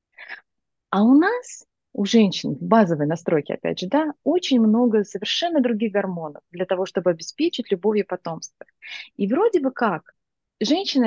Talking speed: 145 wpm